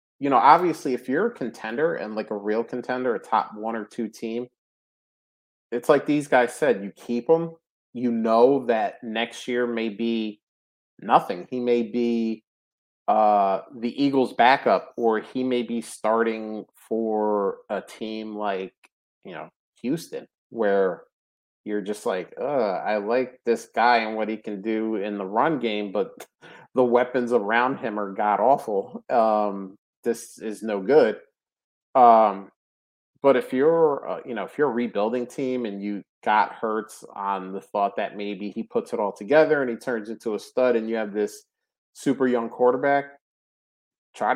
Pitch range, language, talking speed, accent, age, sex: 105-120 Hz, English, 165 wpm, American, 30-49, male